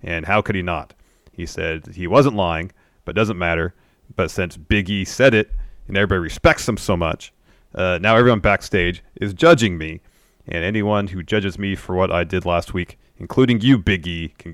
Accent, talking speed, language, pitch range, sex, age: American, 200 wpm, English, 85-100 Hz, male, 30-49